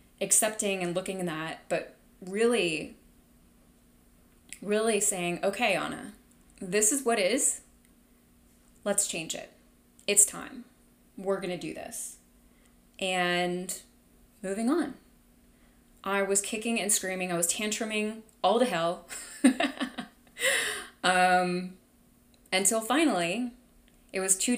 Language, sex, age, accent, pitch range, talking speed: English, female, 20-39, American, 175-210 Hz, 110 wpm